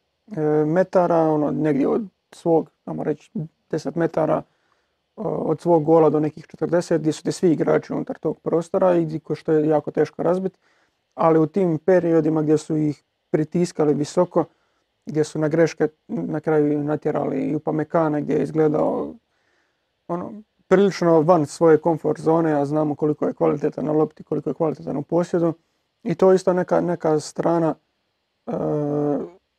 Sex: male